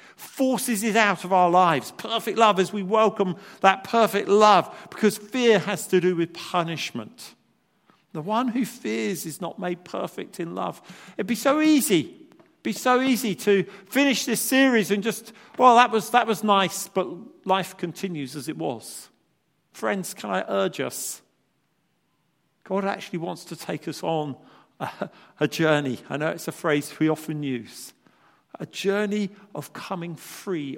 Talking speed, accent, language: 165 wpm, British, English